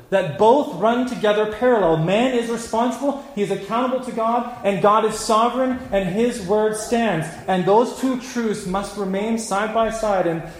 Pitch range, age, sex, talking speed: 155-210 Hz, 30-49, male, 175 wpm